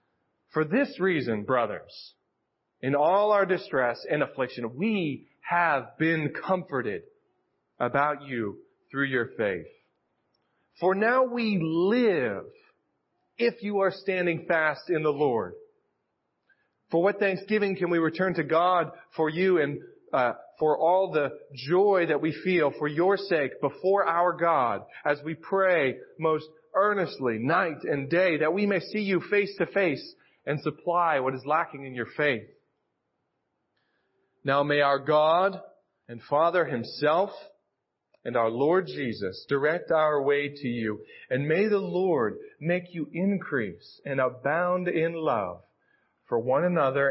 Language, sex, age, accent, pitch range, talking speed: English, male, 40-59, American, 140-195 Hz, 140 wpm